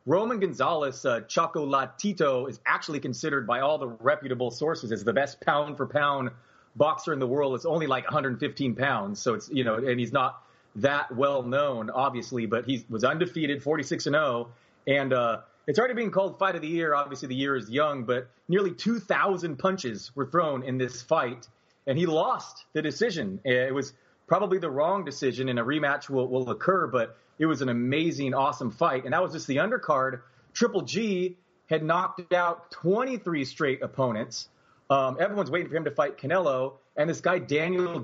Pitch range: 130-165 Hz